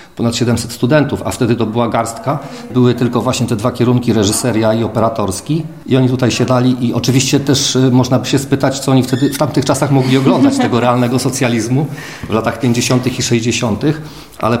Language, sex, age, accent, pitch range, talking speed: Polish, male, 40-59, native, 115-130 Hz, 185 wpm